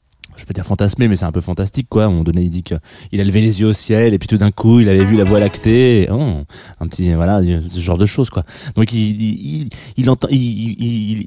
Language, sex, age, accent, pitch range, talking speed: French, male, 20-39, French, 90-115 Hz, 260 wpm